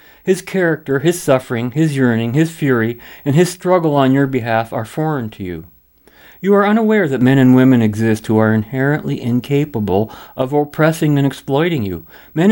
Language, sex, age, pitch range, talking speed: English, male, 50-69, 115-170 Hz, 175 wpm